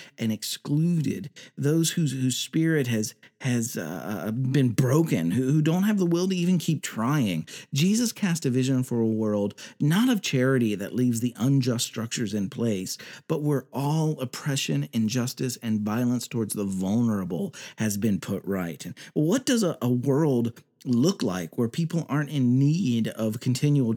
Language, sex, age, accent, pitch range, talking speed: English, male, 40-59, American, 120-165 Hz, 170 wpm